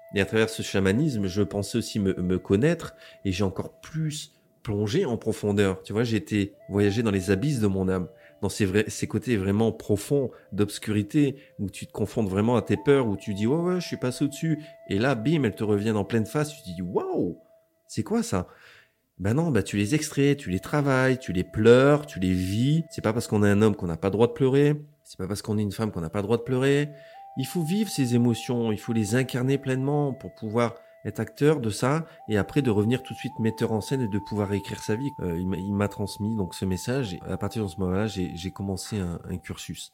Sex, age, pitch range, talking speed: male, 30-49, 100-130 Hz, 255 wpm